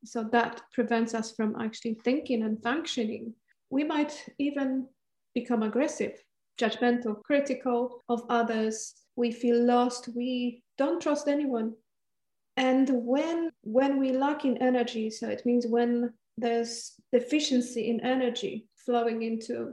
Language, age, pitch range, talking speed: English, 30-49, 230-255 Hz, 130 wpm